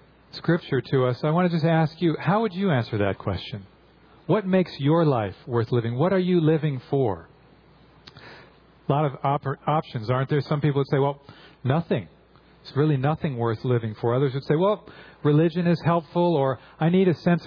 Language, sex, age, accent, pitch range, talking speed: English, male, 40-59, American, 125-160 Hz, 195 wpm